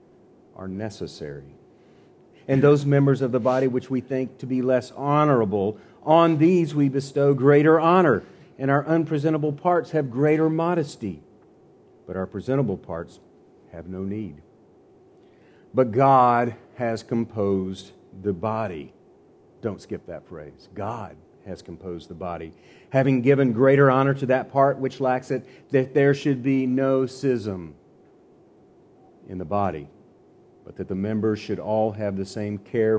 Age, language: 40-59, English